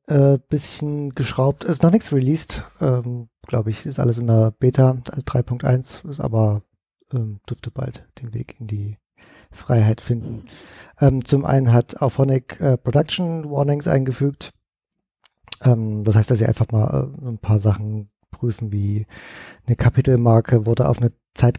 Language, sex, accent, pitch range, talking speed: German, male, German, 115-135 Hz, 155 wpm